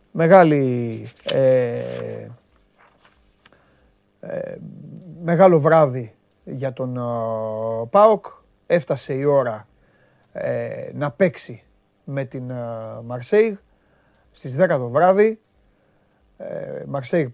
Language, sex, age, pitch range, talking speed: Greek, male, 30-49, 130-165 Hz, 85 wpm